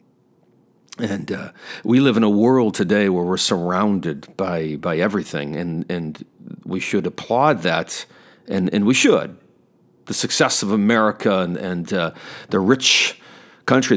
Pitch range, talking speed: 90-120 Hz, 145 wpm